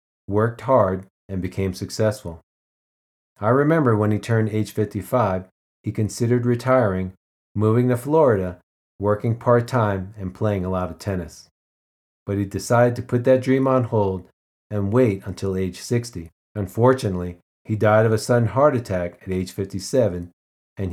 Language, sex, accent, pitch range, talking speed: English, male, American, 90-115 Hz, 150 wpm